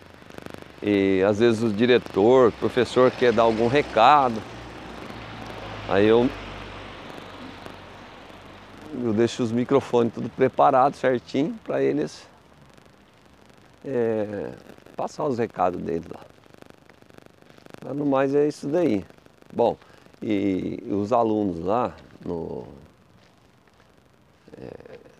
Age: 50-69